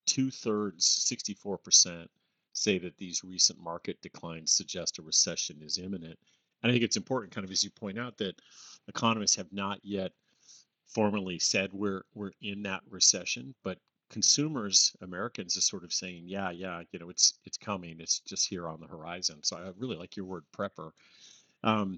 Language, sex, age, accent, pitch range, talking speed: English, male, 40-59, American, 85-105 Hz, 180 wpm